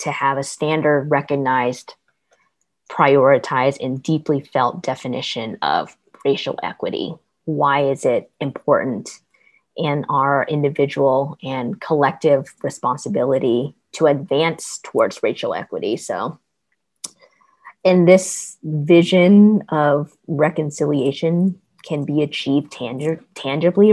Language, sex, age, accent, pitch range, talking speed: English, female, 20-39, American, 140-160 Hz, 100 wpm